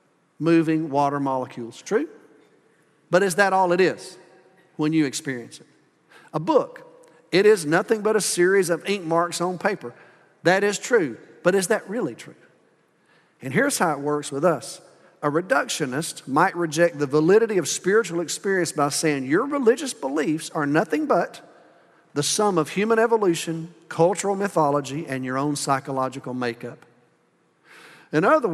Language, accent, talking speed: English, American, 155 wpm